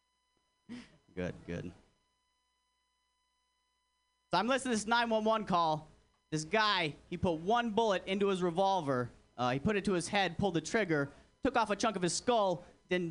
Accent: American